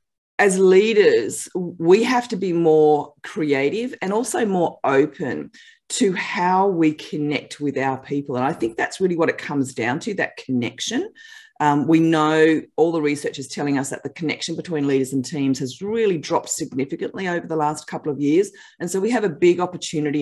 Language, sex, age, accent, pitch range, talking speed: English, female, 40-59, Australian, 140-180 Hz, 190 wpm